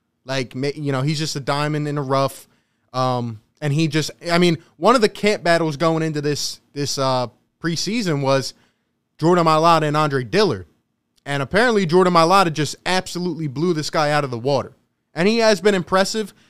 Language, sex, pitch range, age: English, male, 140-180 Hz, 20-39